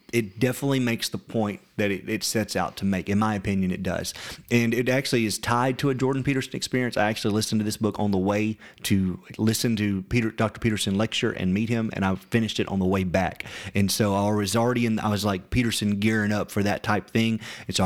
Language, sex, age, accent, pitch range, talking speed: English, male, 30-49, American, 100-115 Hz, 240 wpm